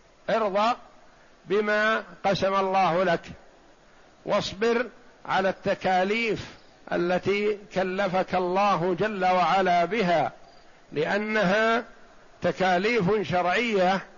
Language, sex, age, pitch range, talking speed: Arabic, male, 60-79, 180-205 Hz, 70 wpm